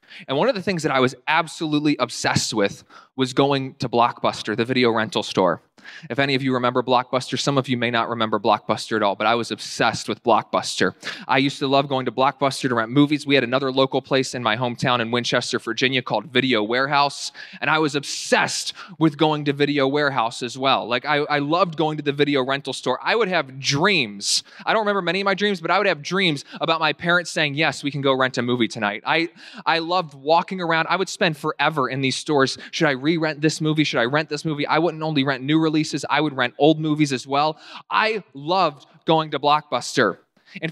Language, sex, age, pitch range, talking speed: English, male, 20-39, 125-155 Hz, 225 wpm